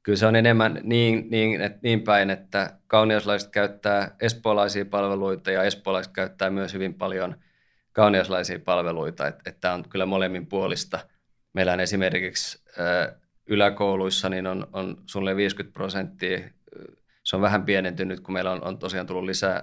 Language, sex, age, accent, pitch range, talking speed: Finnish, male, 20-39, native, 90-100 Hz, 145 wpm